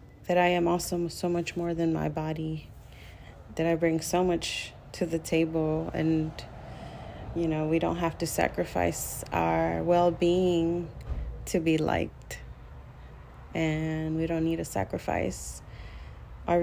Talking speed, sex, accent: 135 wpm, female, American